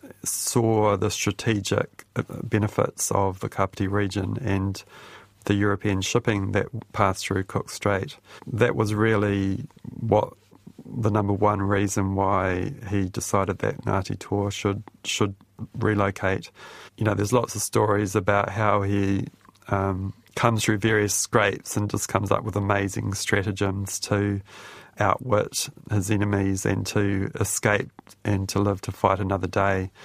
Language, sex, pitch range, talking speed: English, male, 100-105 Hz, 140 wpm